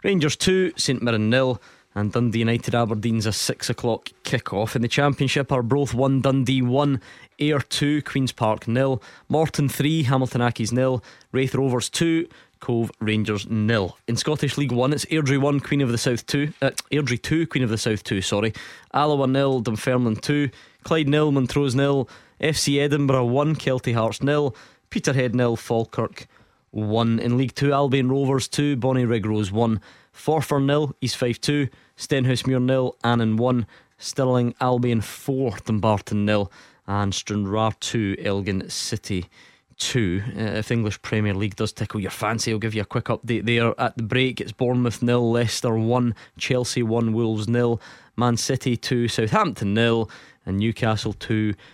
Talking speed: 165 wpm